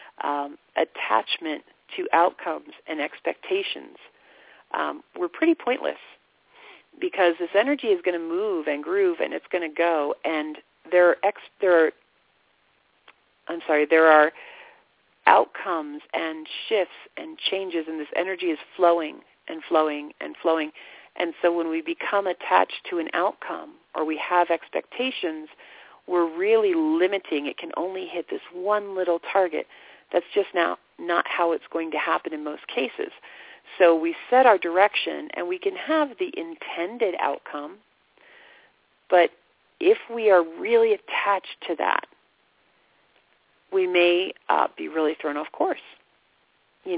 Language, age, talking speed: English, 40-59, 145 wpm